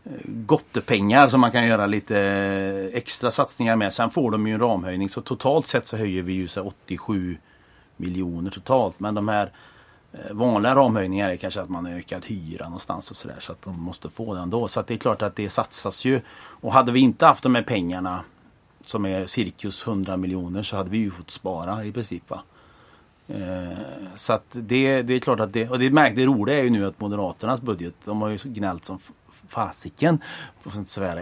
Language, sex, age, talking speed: English, male, 30-49, 200 wpm